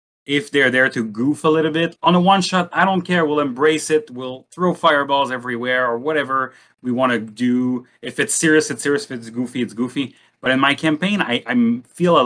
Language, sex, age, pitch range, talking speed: English, male, 30-49, 110-150 Hz, 225 wpm